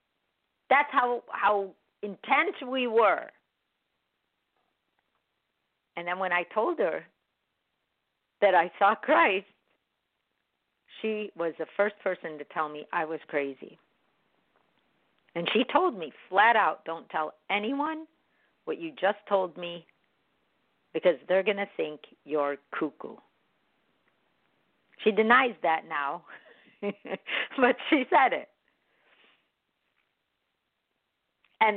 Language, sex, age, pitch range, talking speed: English, female, 50-69, 160-215 Hz, 110 wpm